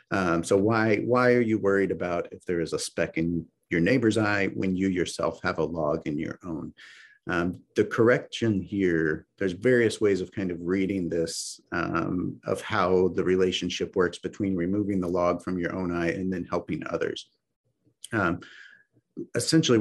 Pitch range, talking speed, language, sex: 90-110 Hz, 175 wpm, English, male